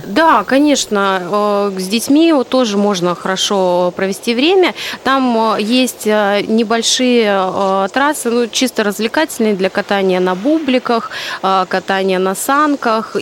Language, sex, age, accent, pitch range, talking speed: Russian, female, 30-49, native, 190-235 Hz, 105 wpm